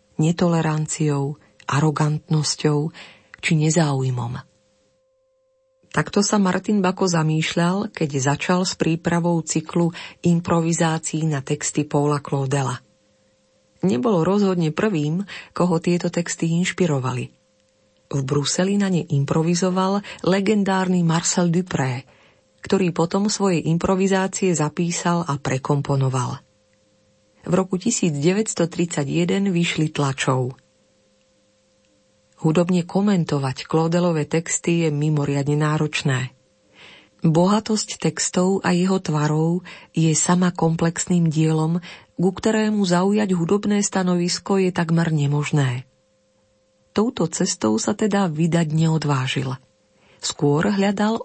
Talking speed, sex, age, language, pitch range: 90 wpm, female, 40-59, Slovak, 140-185 Hz